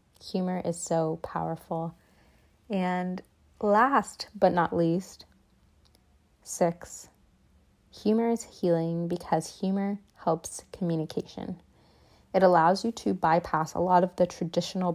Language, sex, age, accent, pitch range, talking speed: English, female, 20-39, American, 180-210 Hz, 110 wpm